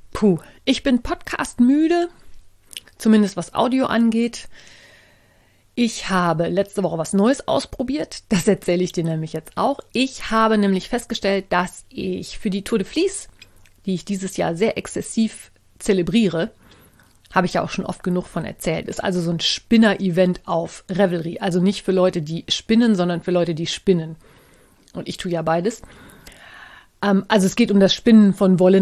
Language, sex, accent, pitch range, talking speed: German, female, German, 180-225 Hz, 170 wpm